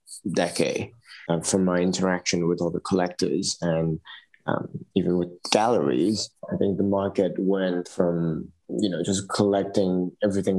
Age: 20-39